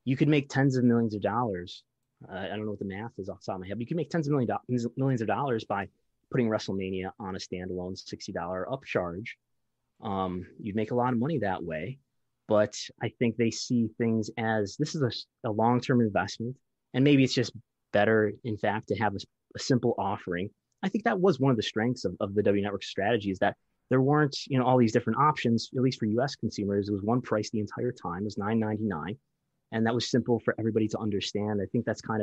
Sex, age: male, 20-39